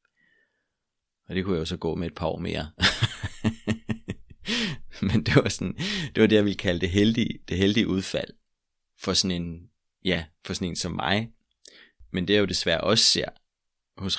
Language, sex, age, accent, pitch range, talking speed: Danish, male, 30-49, native, 85-95 Hz, 185 wpm